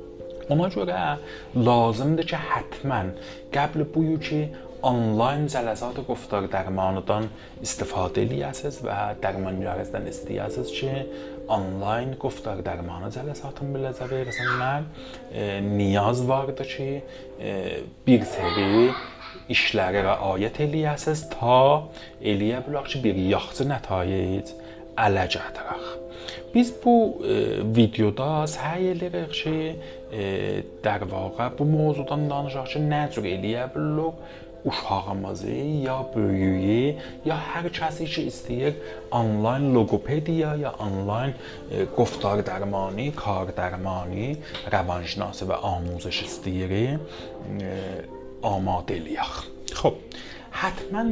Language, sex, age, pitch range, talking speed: Persian, male, 30-49, 95-145 Hz, 100 wpm